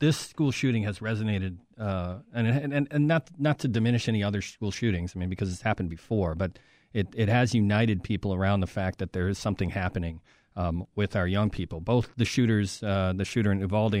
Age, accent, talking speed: 40-59, American, 215 wpm